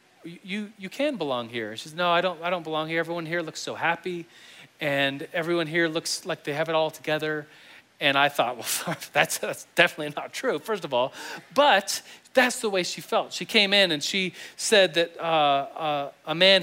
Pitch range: 140-180 Hz